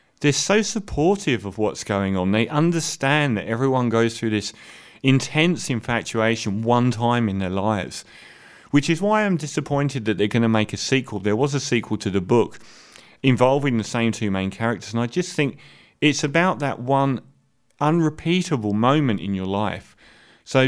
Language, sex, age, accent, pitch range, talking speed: English, male, 30-49, British, 105-135 Hz, 175 wpm